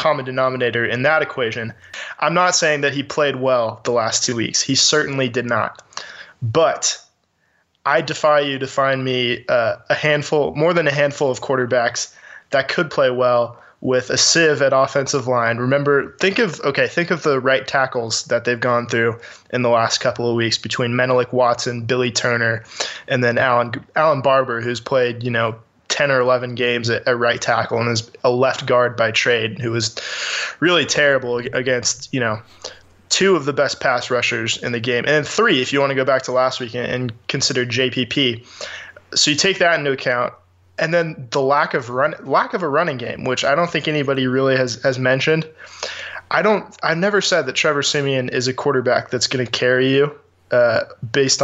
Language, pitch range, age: English, 120-145 Hz, 20-39